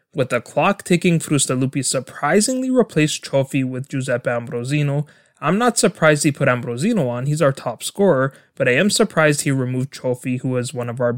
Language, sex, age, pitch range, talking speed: English, male, 20-39, 125-155 Hz, 180 wpm